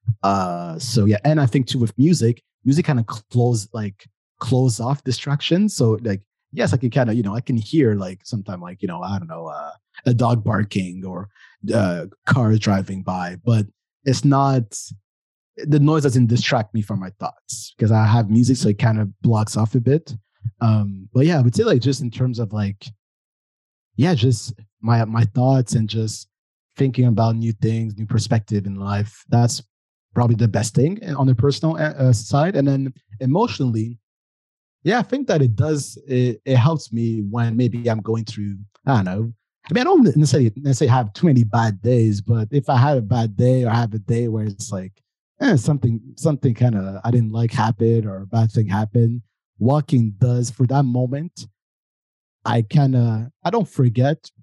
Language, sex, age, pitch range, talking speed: English, male, 20-39, 110-135 Hz, 195 wpm